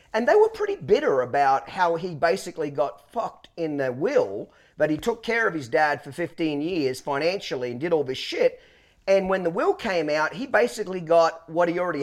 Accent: Australian